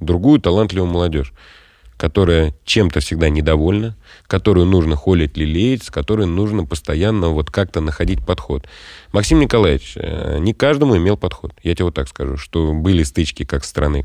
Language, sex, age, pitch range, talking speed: Russian, male, 30-49, 80-105 Hz, 150 wpm